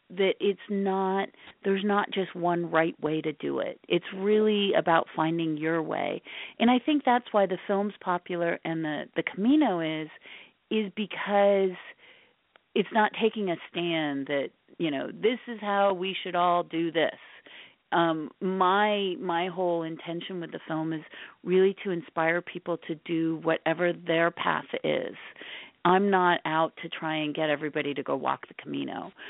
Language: English